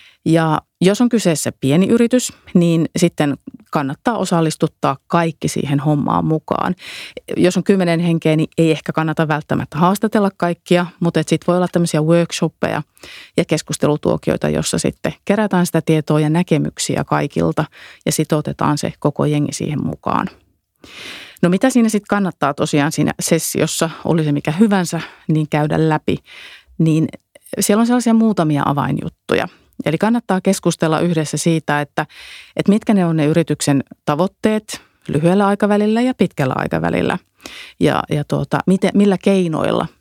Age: 30-49